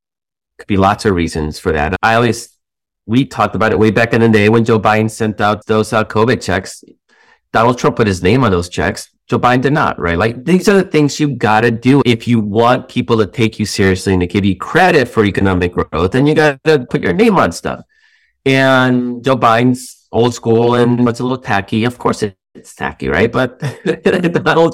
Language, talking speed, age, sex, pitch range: English, 220 wpm, 30-49, male, 105-140 Hz